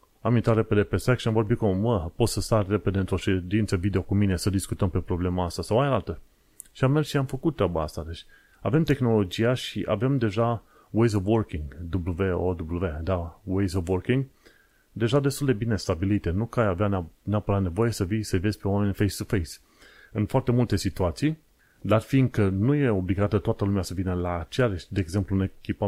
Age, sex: 30-49, male